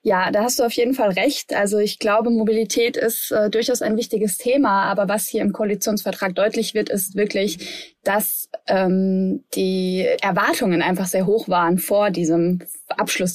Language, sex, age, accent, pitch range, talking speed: German, female, 20-39, German, 190-230 Hz, 170 wpm